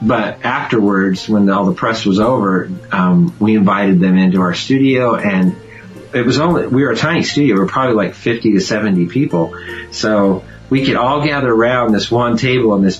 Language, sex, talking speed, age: English, male, 200 wpm, 40-59